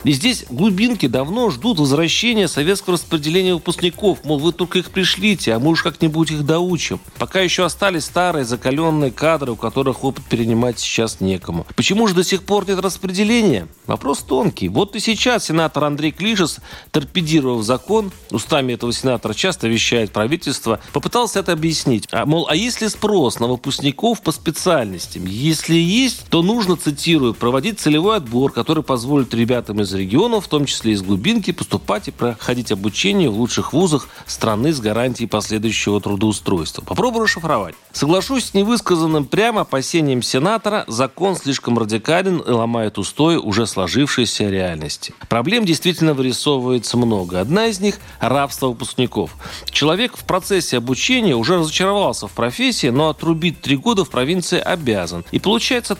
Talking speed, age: 150 wpm, 40-59